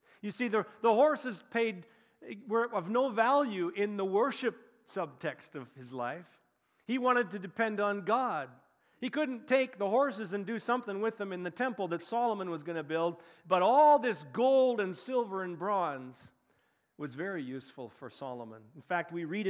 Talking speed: 180 wpm